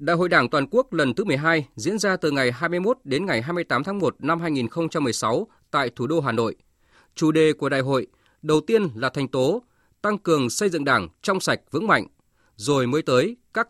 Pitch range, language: 135-195 Hz, Vietnamese